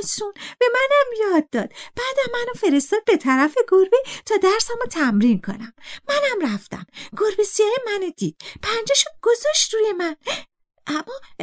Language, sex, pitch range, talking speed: Persian, female, 275-435 Hz, 135 wpm